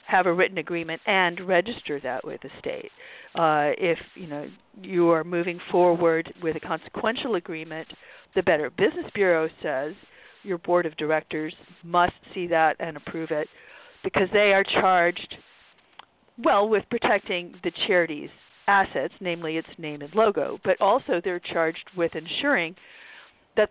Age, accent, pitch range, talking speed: 50-69, American, 160-190 Hz, 150 wpm